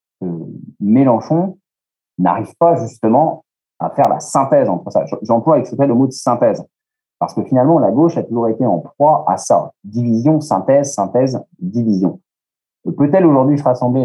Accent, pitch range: French, 105-150 Hz